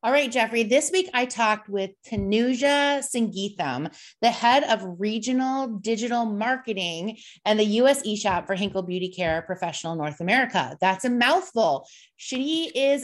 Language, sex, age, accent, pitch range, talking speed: English, female, 30-49, American, 180-245 Hz, 145 wpm